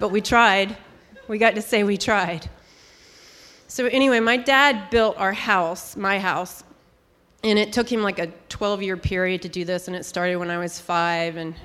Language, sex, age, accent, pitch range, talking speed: English, female, 30-49, American, 185-230 Hz, 190 wpm